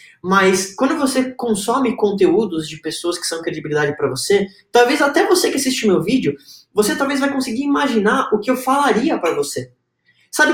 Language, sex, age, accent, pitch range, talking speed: Portuguese, male, 10-29, Brazilian, 155-250 Hz, 180 wpm